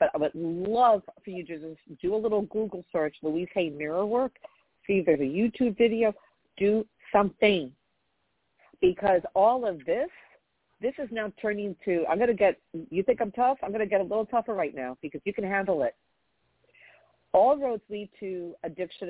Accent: American